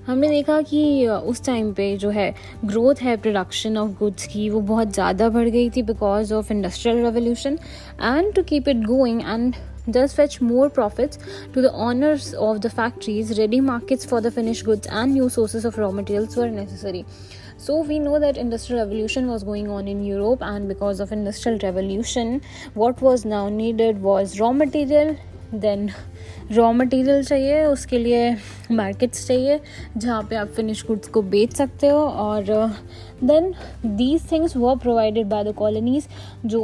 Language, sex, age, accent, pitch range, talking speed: Hindi, female, 20-39, native, 205-250 Hz, 170 wpm